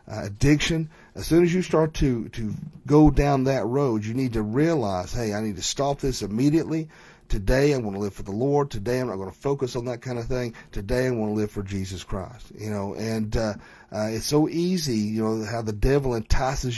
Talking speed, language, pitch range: 235 wpm, English, 110-135 Hz